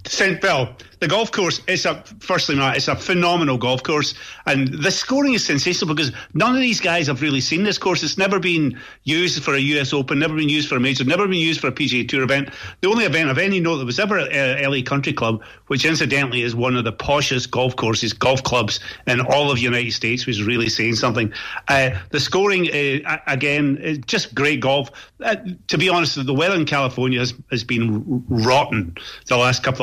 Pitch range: 125-150 Hz